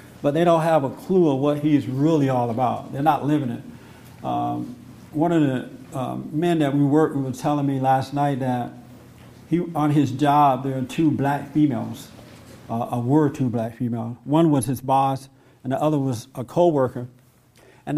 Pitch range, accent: 130-155 Hz, American